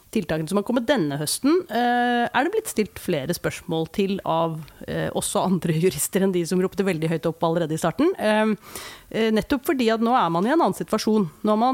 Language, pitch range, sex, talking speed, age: English, 155-205 Hz, female, 210 wpm, 30-49